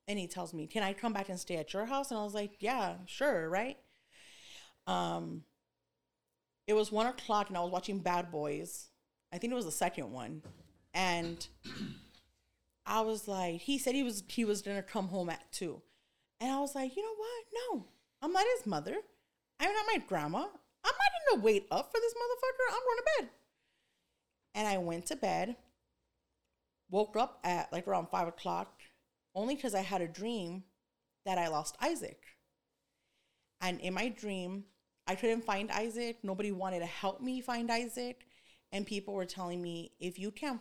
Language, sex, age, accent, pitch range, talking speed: English, female, 30-49, American, 185-250 Hz, 190 wpm